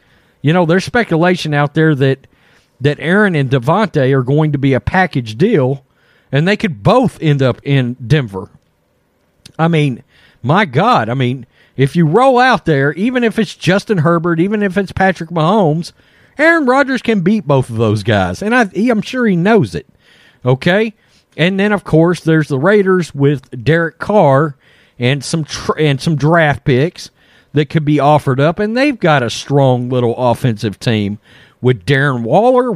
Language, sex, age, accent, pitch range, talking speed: English, male, 40-59, American, 130-200 Hz, 175 wpm